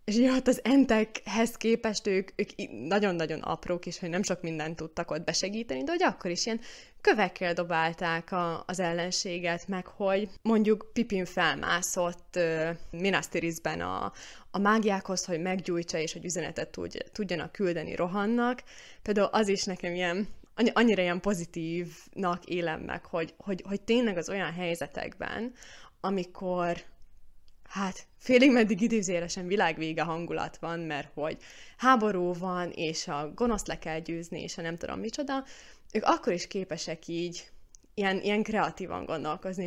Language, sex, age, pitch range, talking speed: Hungarian, female, 20-39, 170-210 Hz, 140 wpm